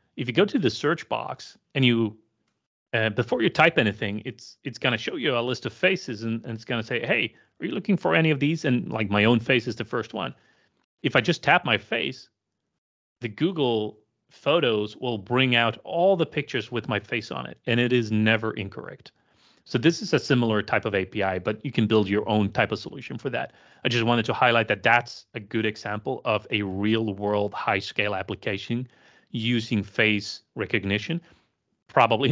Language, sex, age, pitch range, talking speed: English, male, 30-49, 105-120 Hz, 205 wpm